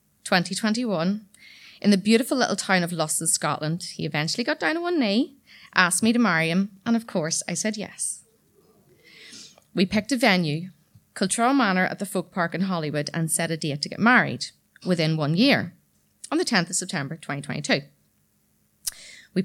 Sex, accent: female, Irish